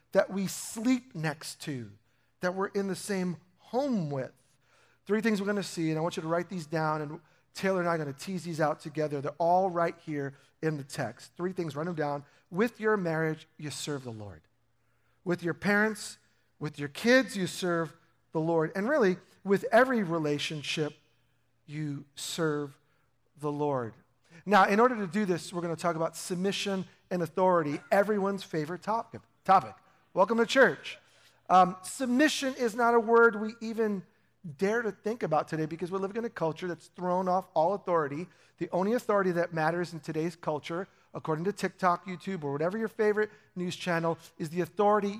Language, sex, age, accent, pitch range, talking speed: English, male, 40-59, American, 150-195 Hz, 185 wpm